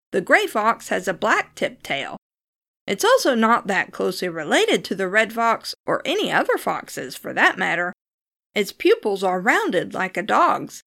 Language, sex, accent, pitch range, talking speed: English, female, American, 190-310 Hz, 170 wpm